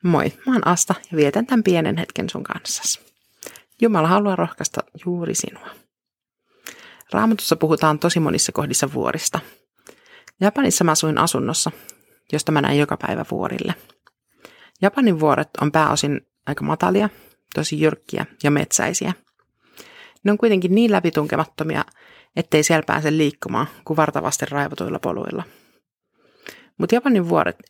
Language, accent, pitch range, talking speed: Finnish, native, 155-205 Hz, 125 wpm